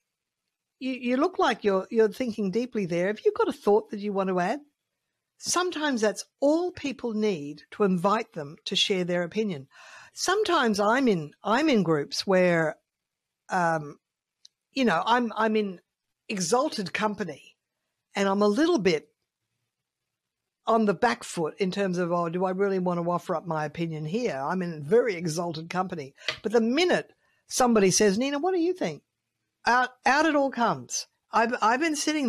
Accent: Australian